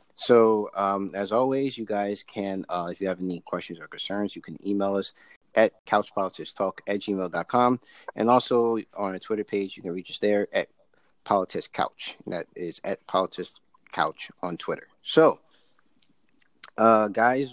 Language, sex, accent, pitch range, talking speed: English, male, American, 95-110 Hz, 160 wpm